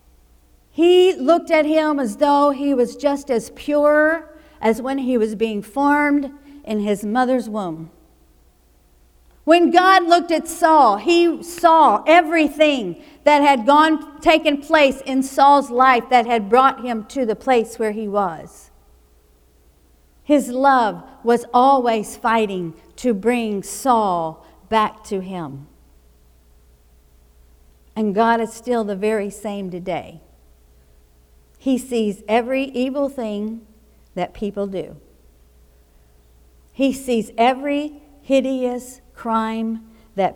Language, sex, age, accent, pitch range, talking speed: English, female, 50-69, American, 165-270 Hz, 120 wpm